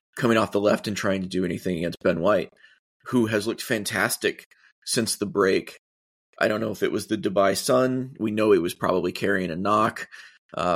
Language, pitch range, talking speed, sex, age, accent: English, 100-125 Hz, 205 wpm, male, 30-49, American